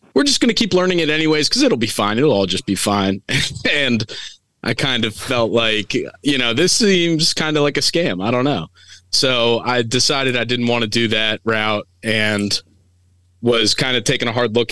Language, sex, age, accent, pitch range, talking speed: English, male, 30-49, American, 100-120 Hz, 215 wpm